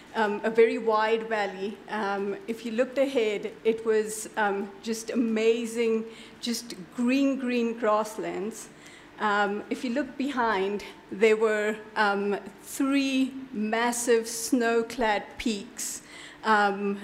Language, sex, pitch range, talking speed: English, female, 215-250 Hz, 115 wpm